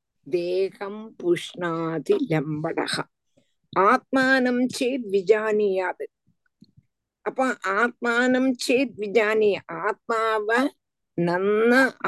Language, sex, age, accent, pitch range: Tamil, female, 50-69, native, 175-245 Hz